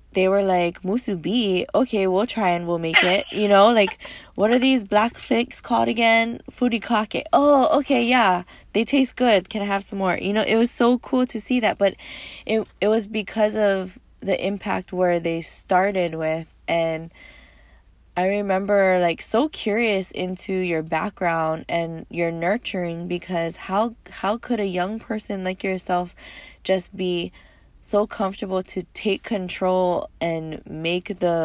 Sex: female